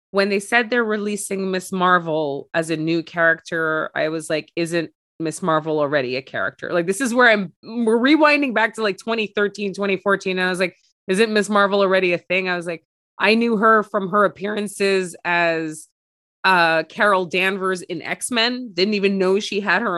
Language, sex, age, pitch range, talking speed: English, female, 20-39, 180-220 Hz, 190 wpm